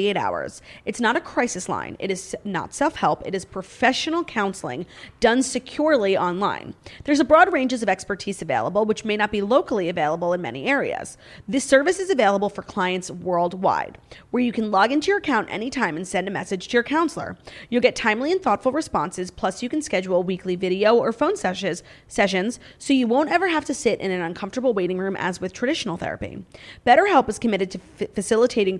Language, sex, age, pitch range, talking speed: English, female, 30-49, 185-260 Hz, 195 wpm